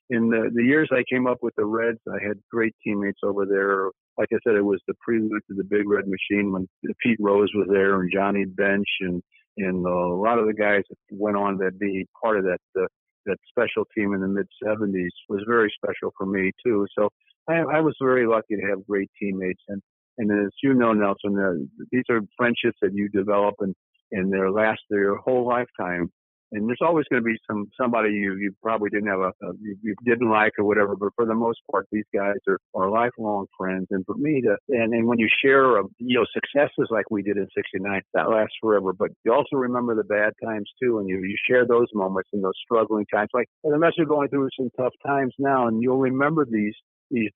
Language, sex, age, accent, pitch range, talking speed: English, male, 50-69, American, 100-120 Hz, 225 wpm